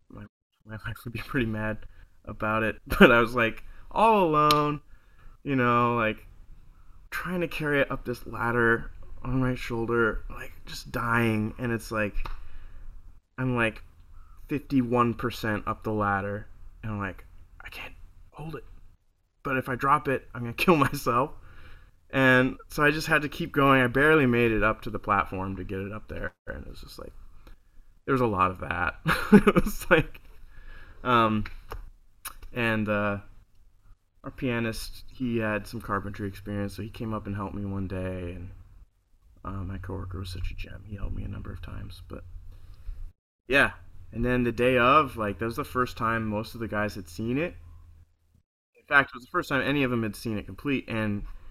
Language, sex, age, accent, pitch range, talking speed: English, male, 20-39, American, 90-125 Hz, 185 wpm